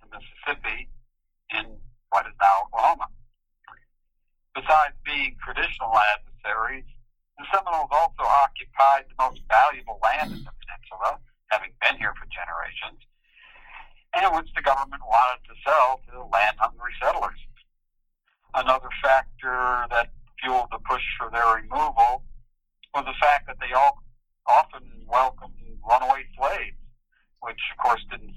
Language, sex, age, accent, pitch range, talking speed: English, male, 60-79, American, 115-140 Hz, 115 wpm